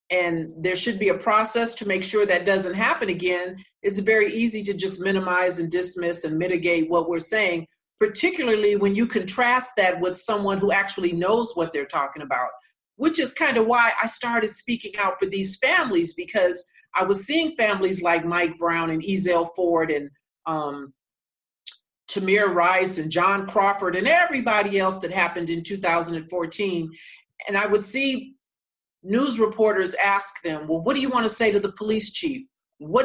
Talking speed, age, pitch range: 175 wpm, 40-59, 180-240 Hz